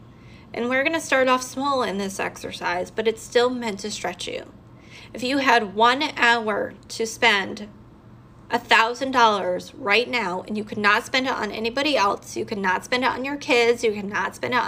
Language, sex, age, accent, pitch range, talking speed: English, female, 20-39, American, 215-255 Hz, 195 wpm